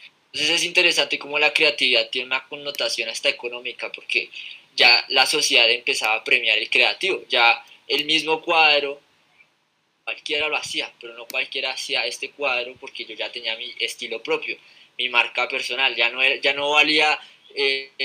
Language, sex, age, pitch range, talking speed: Spanish, male, 20-39, 130-180 Hz, 165 wpm